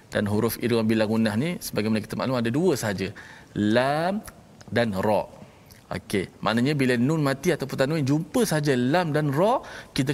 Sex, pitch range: male, 110-140 Hz